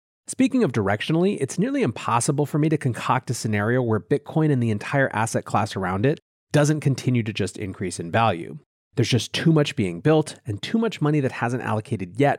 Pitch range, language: 110-150 Hz, English